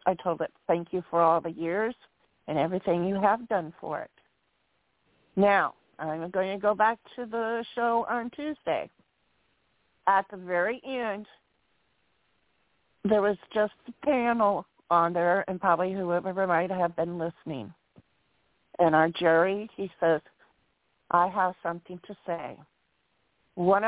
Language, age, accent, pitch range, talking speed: English, 50-69, American, 170-210 Hz, 140 wpm